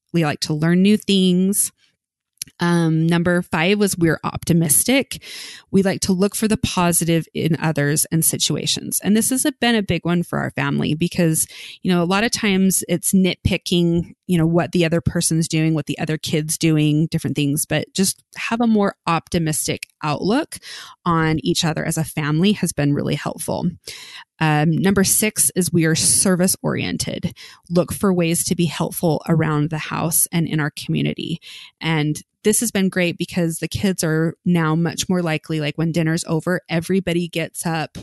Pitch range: 155-180 Hz